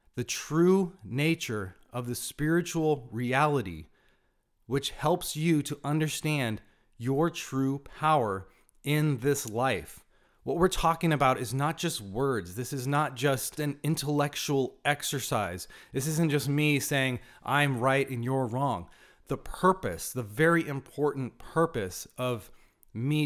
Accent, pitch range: American, 125-160 Hz